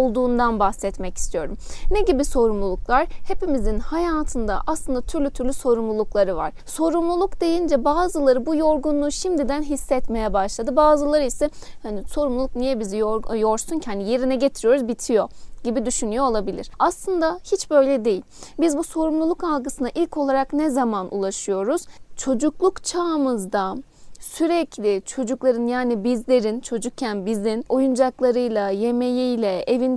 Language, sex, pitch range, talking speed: Turkish, female, 225-290 Hz, 120 wpm